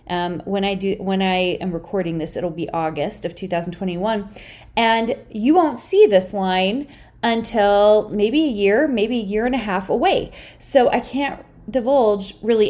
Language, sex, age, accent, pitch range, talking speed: English, female, 20-39, American, 190-255 Hz, 170 wpm